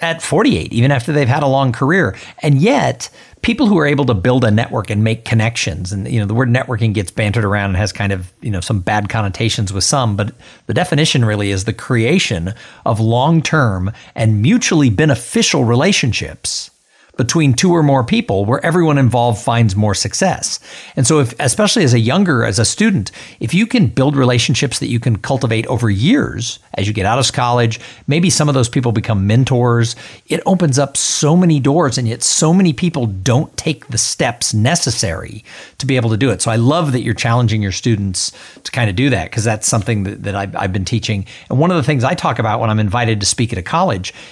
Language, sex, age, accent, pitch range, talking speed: English, male, 50-69, American, 110-140 Hz, 215 wpm